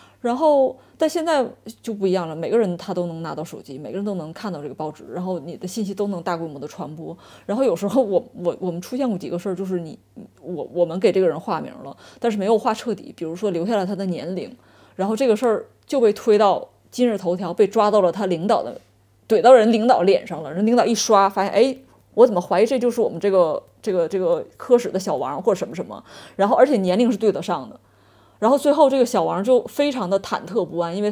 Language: Chinese